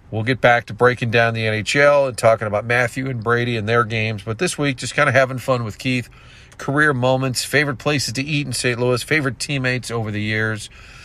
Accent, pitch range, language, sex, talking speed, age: American, 115-145 Hz, English, male, 225 wpm, 40-59